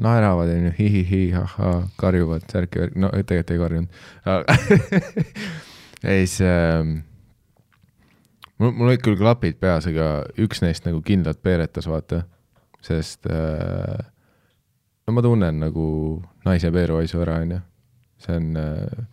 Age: 20-39